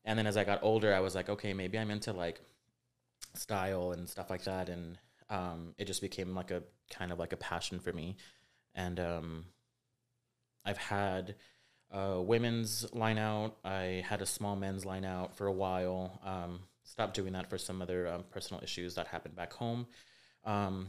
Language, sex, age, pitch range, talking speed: English, male, 30-49, 90-105 Hz, 190 wpm